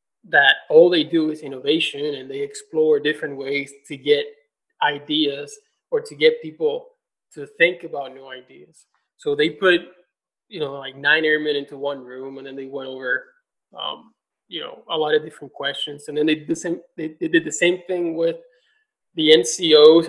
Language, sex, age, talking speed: English, male, 20-39, 175 wpm